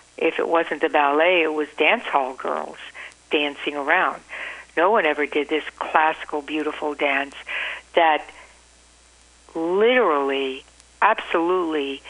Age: 60-79